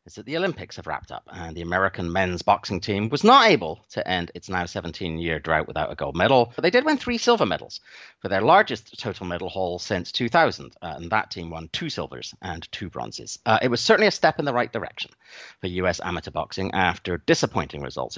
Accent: British